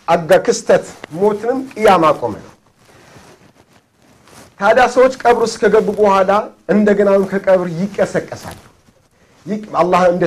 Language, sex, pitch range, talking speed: Amharic, male, 185-235 Hz, 90 wpm